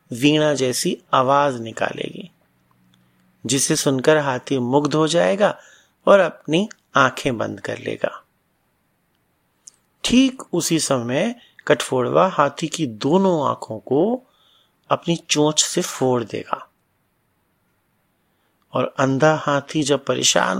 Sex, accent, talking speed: male, native, 100 wpm